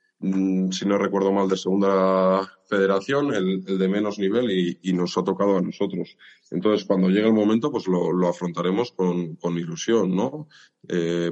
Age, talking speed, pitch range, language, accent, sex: 20-39, 175 wpm, 90-105 Hz, Spanish, Spanish, male